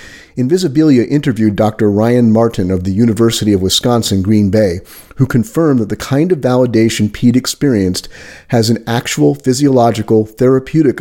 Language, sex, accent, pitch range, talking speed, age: English, male, American, 105-130 Hz, 135 wpm, 40-59